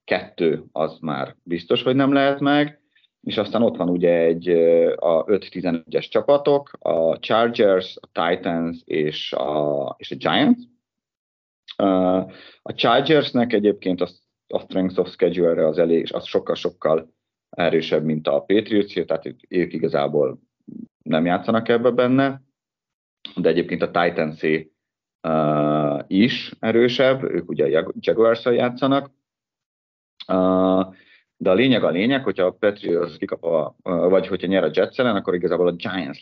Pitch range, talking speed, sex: 80-115 Hz, 140 wpm, male